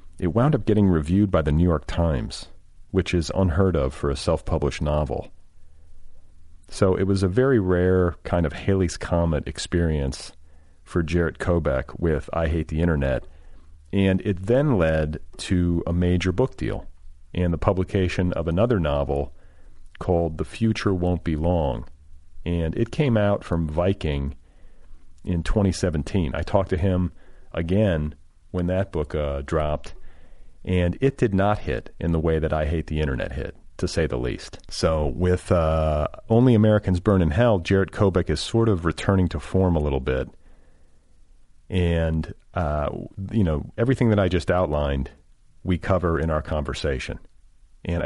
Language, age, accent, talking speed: English, 40-59, American, 160 wpm